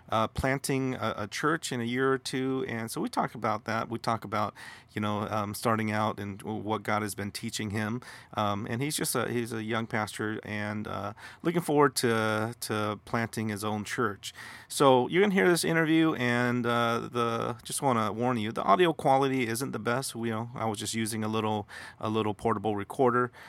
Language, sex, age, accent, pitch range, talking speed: English, male, 30-49, American, 110-130 Hz, 210 wpm